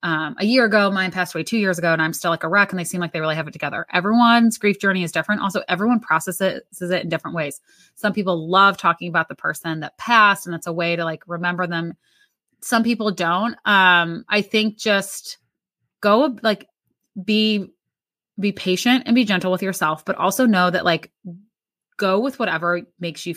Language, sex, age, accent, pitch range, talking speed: English, female, 20-39, American, 170-215 Hz, 210 wpm